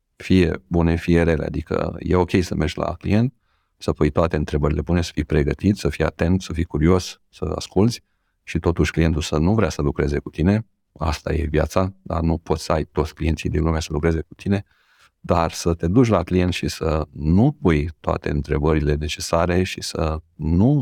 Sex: male